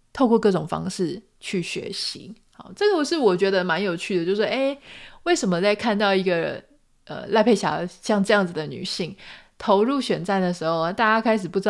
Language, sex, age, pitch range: Chinese, female, 20-39, 180-245 Hz